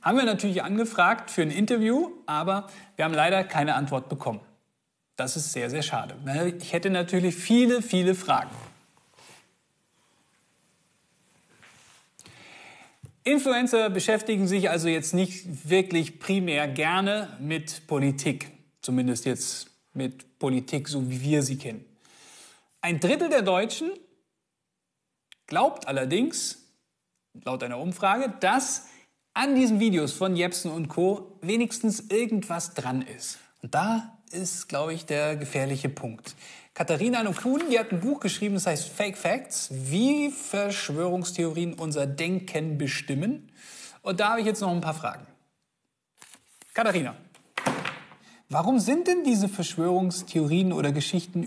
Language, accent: German, German